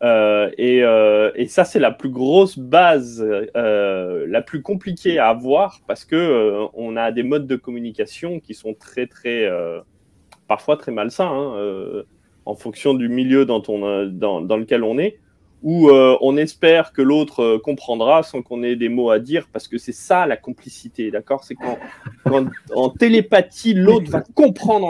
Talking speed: 185 wpm